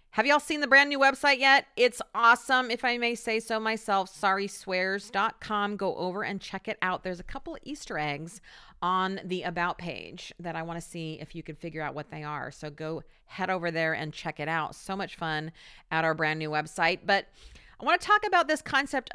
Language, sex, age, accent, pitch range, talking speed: English, female, 40-59, American, 160-220 Hz, 225 wpm